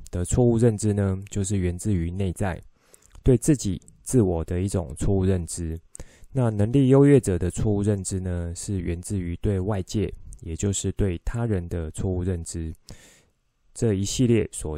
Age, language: 20-39, Chinese